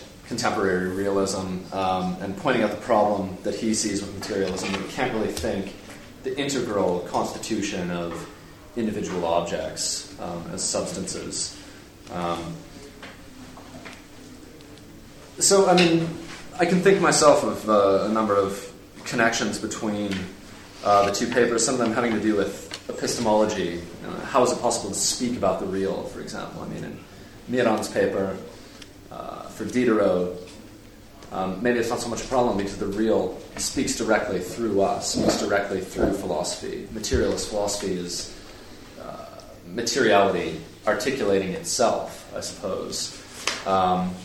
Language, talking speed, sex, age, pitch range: English, 140 wpm, male, 30-49, 90-110 Hz